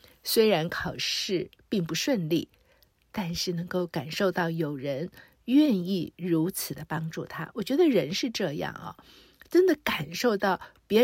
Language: Chinese